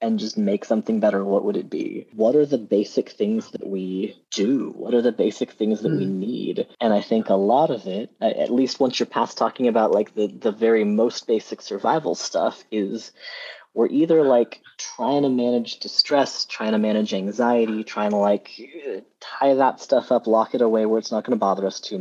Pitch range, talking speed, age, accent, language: 105-140 Hz, 210 wpm, 30-49, American, English